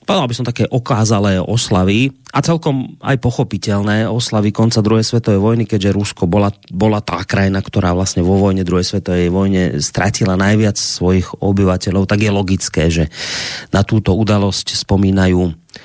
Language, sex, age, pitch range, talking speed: Slovak, male, 30-49, 95-125 Hz, 150 wpm